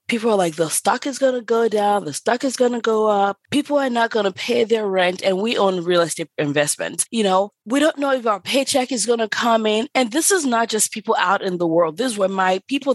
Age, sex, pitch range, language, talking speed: 20-39, female, 190-260 Hz, English, 275 wpm